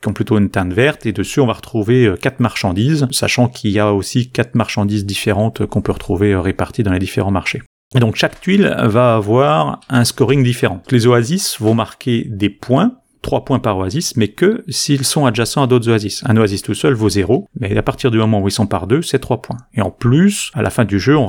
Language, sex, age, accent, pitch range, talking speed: French, male, 30-49, French, 105-130 Hz, 235 wpm